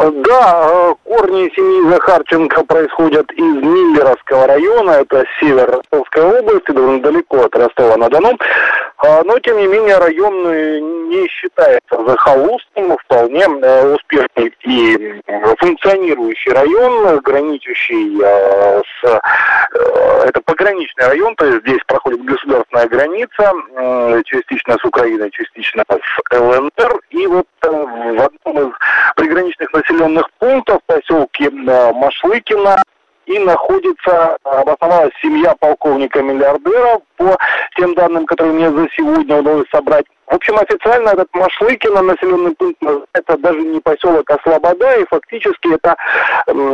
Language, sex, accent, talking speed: Russian, male, native, 115 wpm